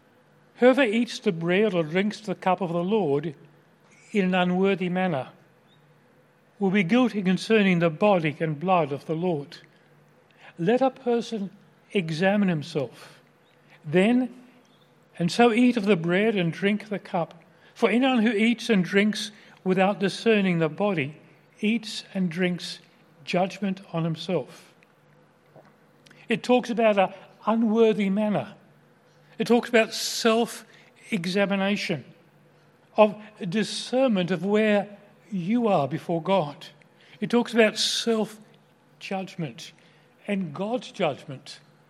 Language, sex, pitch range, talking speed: English, male, 175-220 Hz, 120 wpm